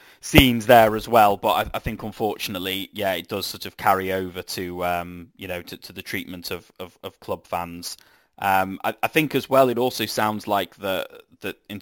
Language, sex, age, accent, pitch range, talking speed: English, male, 20-39, British, 90-105 Hz, 215 wpm